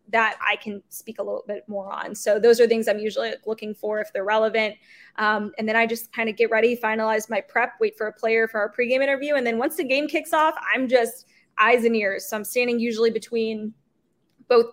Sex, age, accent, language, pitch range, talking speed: female, 20-39, American, English, 210-245 Hz, 235 wpm